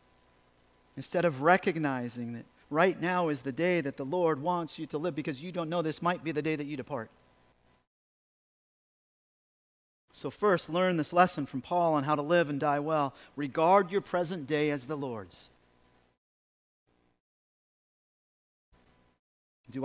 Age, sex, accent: 40-59, male, American